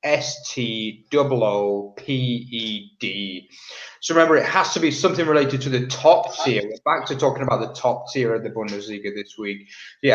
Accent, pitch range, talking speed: British, 110-140 Hz, 160 wpm